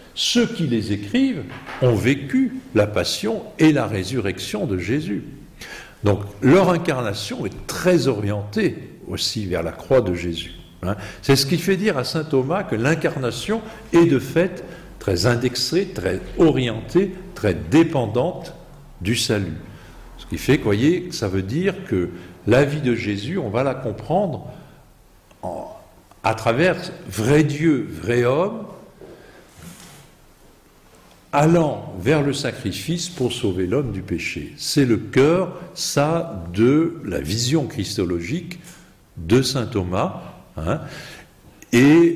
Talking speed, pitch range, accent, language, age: 130 wpm, 100-160 Hz, French, French, 50-69